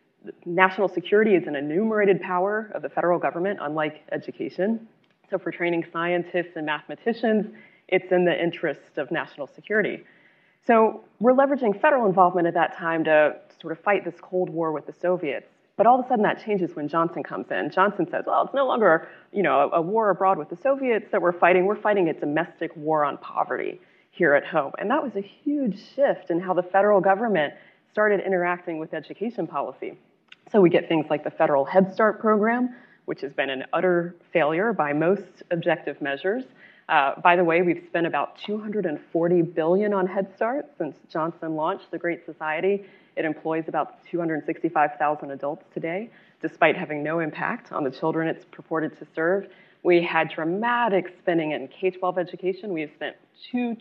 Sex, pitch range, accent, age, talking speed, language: female, 165-205 Hz, American, 30-49, 180 wpm, English